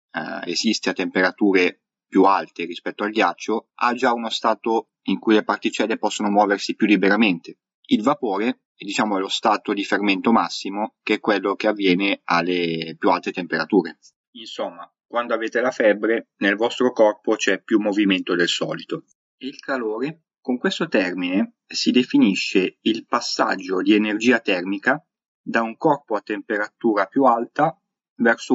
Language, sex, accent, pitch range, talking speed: Italian, male, native, 100-125 Hz, 150 wpm